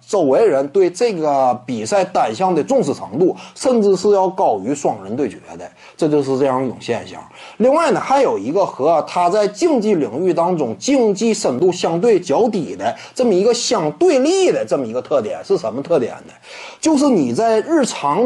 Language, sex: Chinese, male